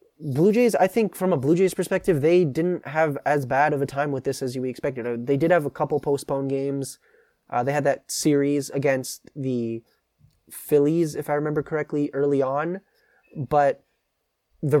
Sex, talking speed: male, 180 wpm